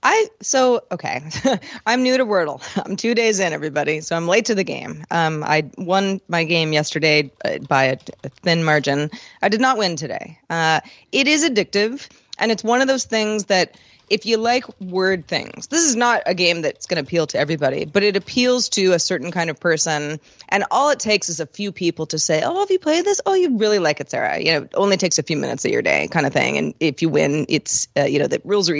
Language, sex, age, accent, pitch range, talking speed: English, female, 30-49, American, 160-215 Hz, 240 wpm